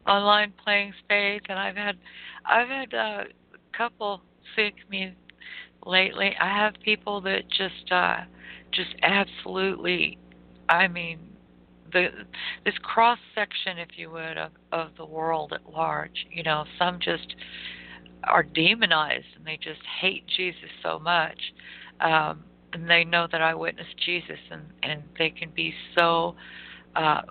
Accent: American